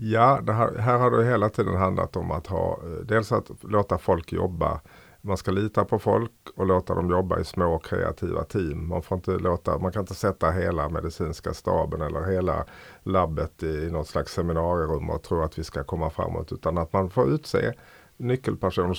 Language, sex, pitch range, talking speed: Swedish, male, 85-105 Hz, 195 wpm